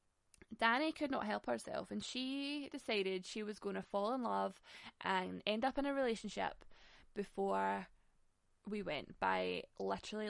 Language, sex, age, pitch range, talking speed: English, female, 10-29, 185-225 Hz, 150 wpm